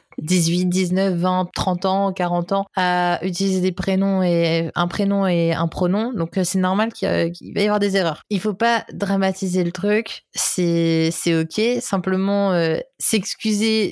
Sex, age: female, 20-39